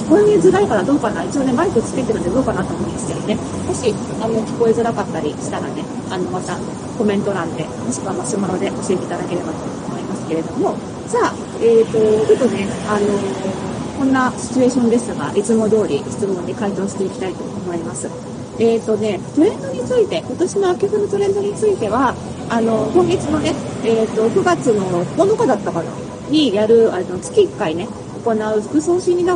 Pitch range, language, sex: 215-325 Hz, Japanese, female